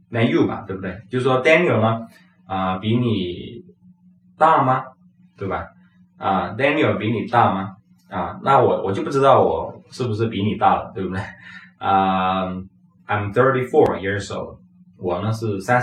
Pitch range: 100-165 Hz